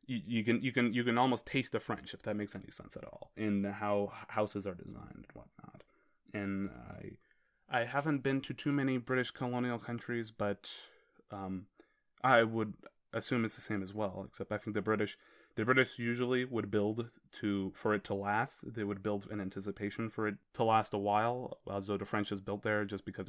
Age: 20-39